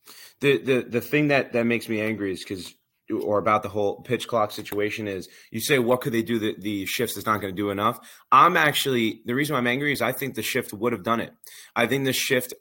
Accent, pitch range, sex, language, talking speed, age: American, 105-125 Hz, male, English, 255 wpm, 30-49